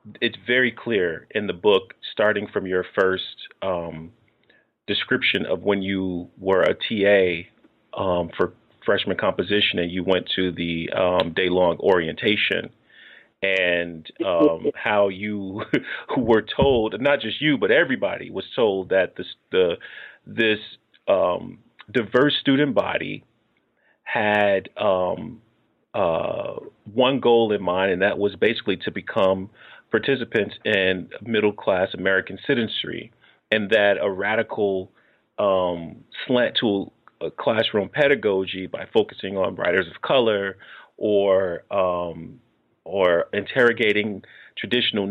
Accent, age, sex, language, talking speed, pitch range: American, 40-59, male, English, 120 wpm, 95-110 Hz